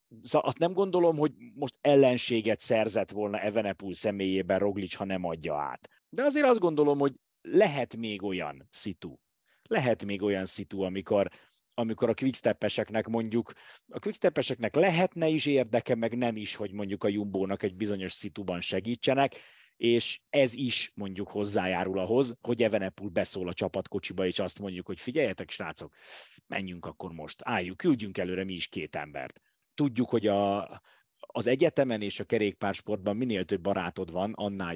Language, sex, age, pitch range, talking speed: Hungarian, male, 30-49, 95-125 Hz, 155 wpm